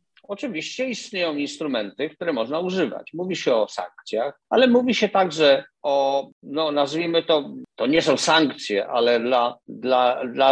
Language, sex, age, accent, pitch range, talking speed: Polish, male, 50-69, native, 145-205 Hz, 145 wpm